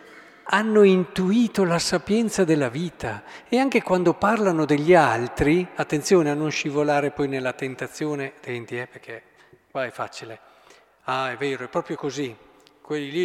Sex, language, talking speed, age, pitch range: male, Italian, 150 wpm, 50-69, 135-180 Hz